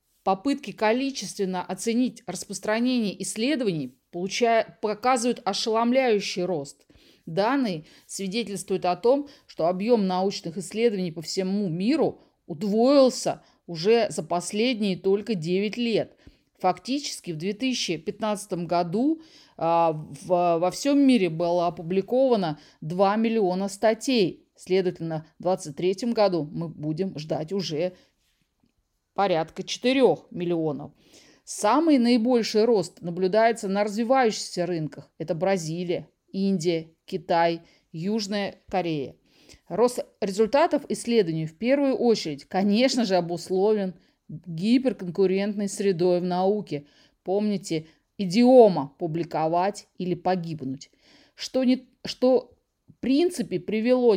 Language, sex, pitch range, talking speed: Russian, female, 175-230 Hz, 95 wpm